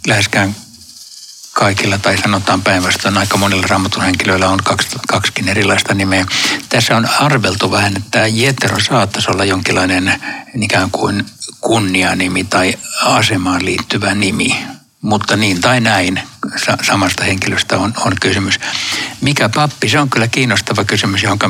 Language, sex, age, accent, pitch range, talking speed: Finnish, male, 60-79, native, 95-115 Hz, 125 wpm